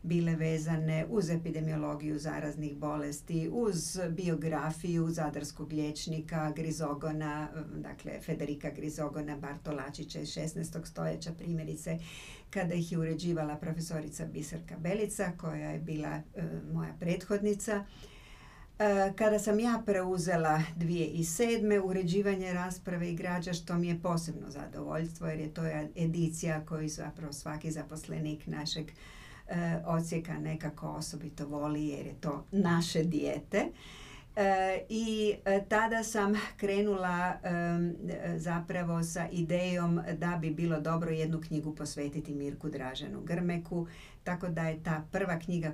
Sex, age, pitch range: female, 50-69, 150-175 Hz